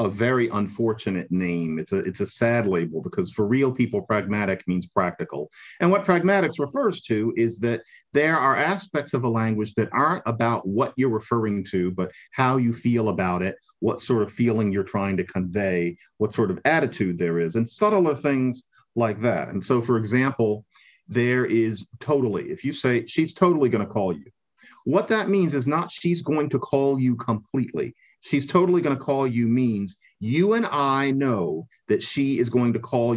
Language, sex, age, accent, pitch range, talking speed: English, male, 40-59, American, 110-140 Hz, 190 wpm